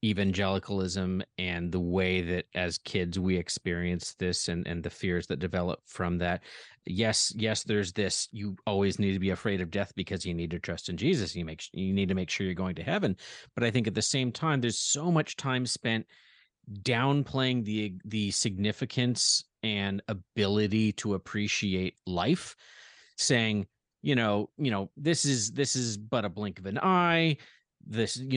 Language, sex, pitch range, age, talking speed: English, male, 100-130 Hz, 30-49, 180 wpm